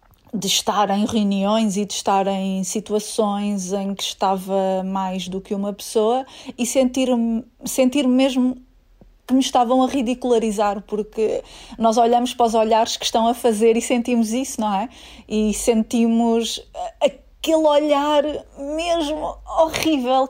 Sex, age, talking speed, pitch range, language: female, 30-49, 140 wpm, 215-260 Hz, Portuguese